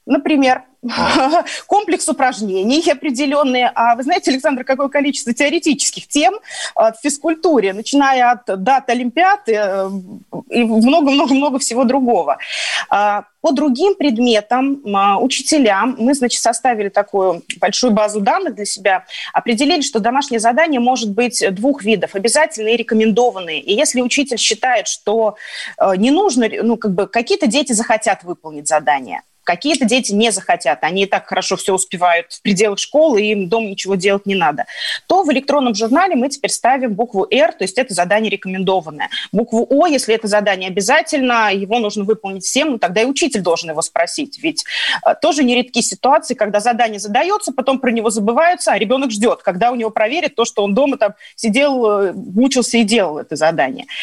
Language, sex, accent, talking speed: Russian, female, native, 155 wpm